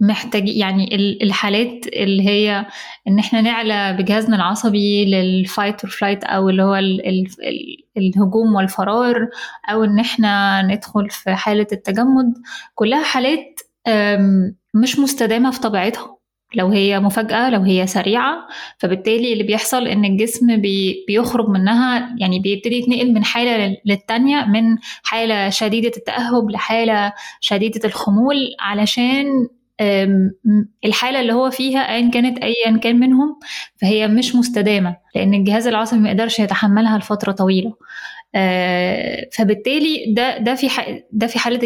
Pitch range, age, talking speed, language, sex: 205-235 Hz, 10-29, 125 wpm, Arabic, female